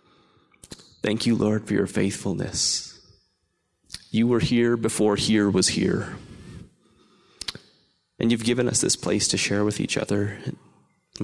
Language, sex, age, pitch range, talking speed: English, male, 30-49, 100-120 Hz, 135 wpm